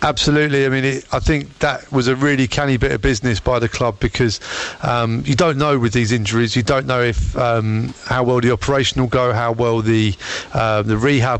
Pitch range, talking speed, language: 120-135 Hz, 230 wpm, English